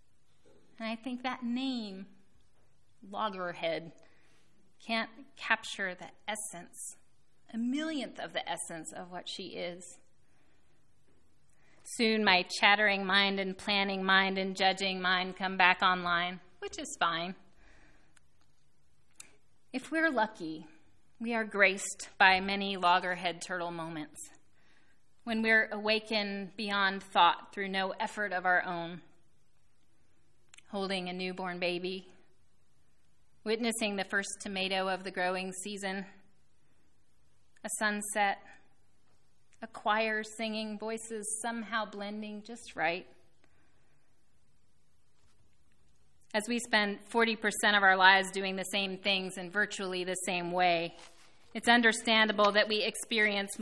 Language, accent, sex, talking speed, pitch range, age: English, American, female, 110 wpm, 185-220 Hz, 30-49